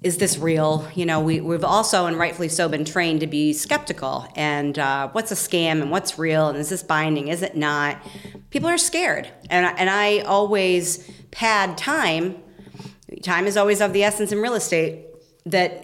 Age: 40-59